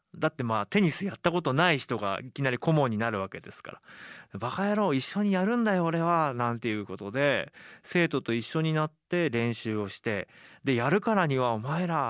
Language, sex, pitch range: Japanese, male, 120-175 Hz